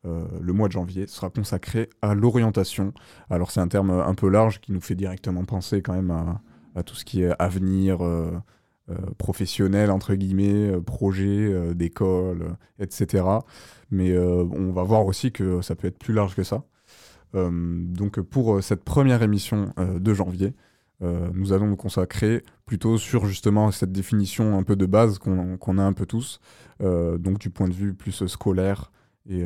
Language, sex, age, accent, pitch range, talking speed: French, male, 20-39, French, 90-105 Hz, 185 wpm